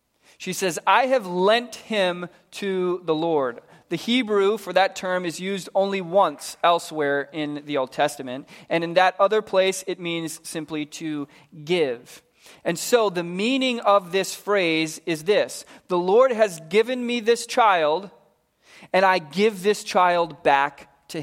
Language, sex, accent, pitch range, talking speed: English, male, American, 165-205 Hz, 160 wpm